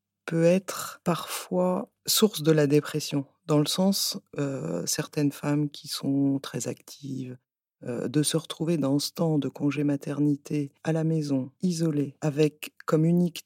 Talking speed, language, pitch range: 150 wpm, French, 140-165 Hz